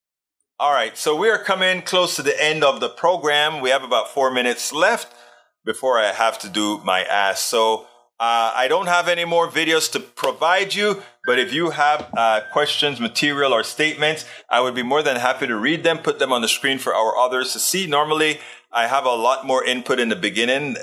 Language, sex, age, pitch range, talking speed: English, male, 30-49, 125-180 Hz, 215 wpm